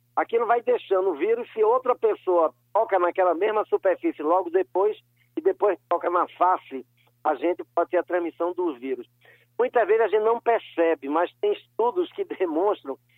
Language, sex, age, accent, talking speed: Portuguese, male, 60-79, Brazilian, 175 wpm